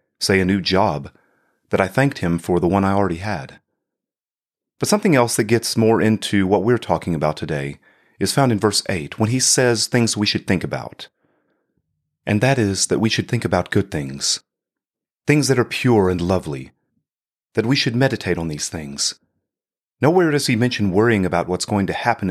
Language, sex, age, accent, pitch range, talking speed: English, male, 30-49, American, 90-125 Hz, 195 wpm